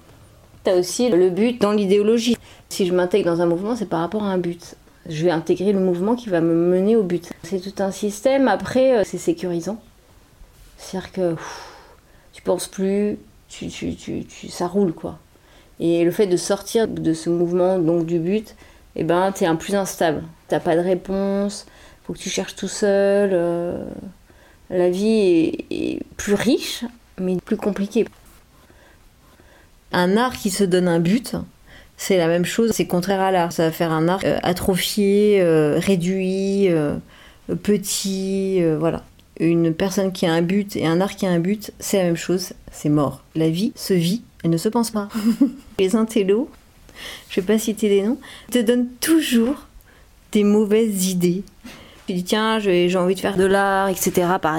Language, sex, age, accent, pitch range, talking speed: French, female, 30-49, French, 175-210 Hz, 185 wpm